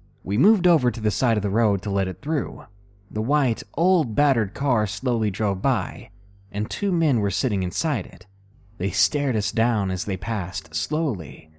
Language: English